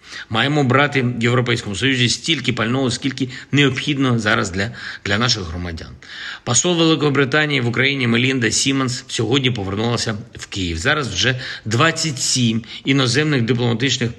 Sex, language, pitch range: male, Ukrainian, 100-130 Hz